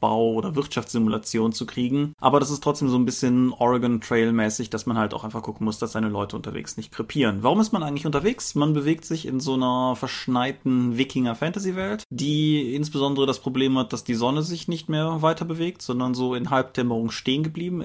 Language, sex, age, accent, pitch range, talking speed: German, male, 30-49, German, 120-155 Hz, 195 wpm